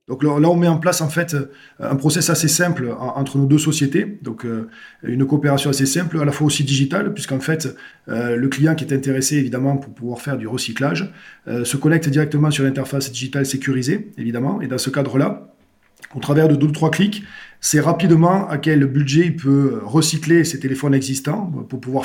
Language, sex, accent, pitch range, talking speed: English, male, French, 125-150 Hz, 200 wpm